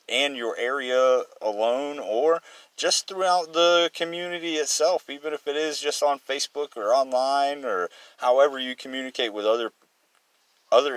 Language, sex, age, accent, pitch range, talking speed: English, male, 30-49, American, 110-145 Hz, 140 wpm